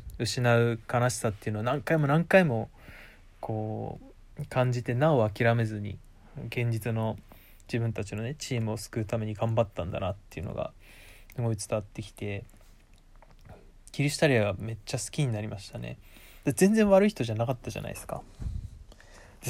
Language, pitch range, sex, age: Japanese, 105-130 Hz, male, 20-39